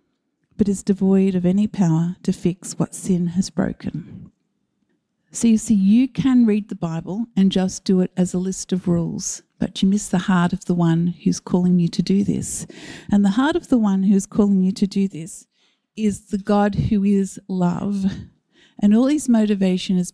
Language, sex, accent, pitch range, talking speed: English, female, Australian, 185-230 Hz, 195 wpm